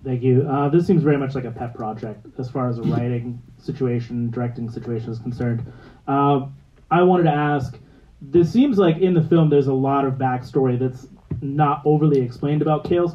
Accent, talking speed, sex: American, 195 wpm, male